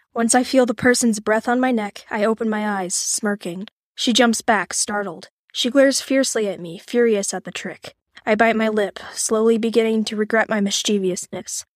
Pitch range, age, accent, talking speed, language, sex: 205-235 Hz, 10-29, American, 190 wpm, English, female